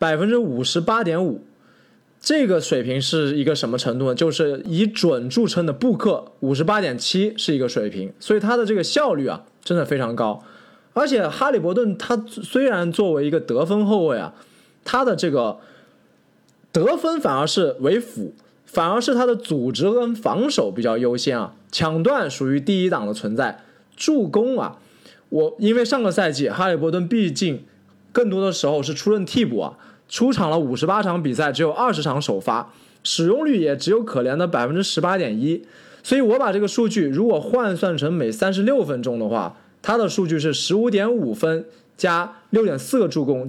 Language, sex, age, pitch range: Chinese, male, 20-39, 150-220 Hz